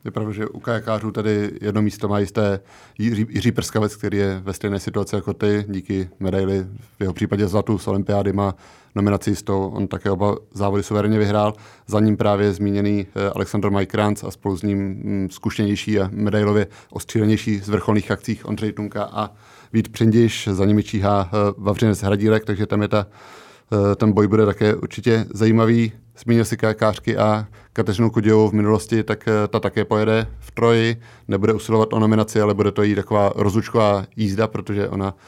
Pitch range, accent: 100-110 Hz, native